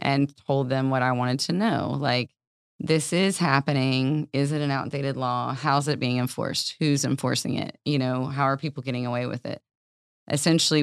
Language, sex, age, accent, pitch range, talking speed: English, female, 20-39, American, 125-145 Hz, 190 wpm